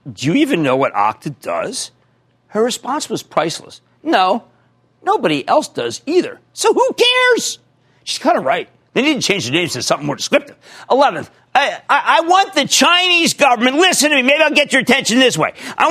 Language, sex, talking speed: English, male, 195 wpm